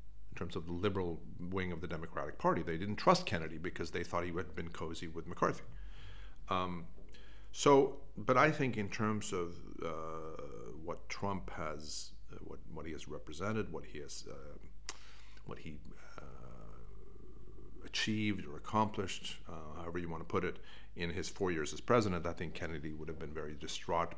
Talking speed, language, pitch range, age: 175 wpm, English, 85-100 Hz, 50-69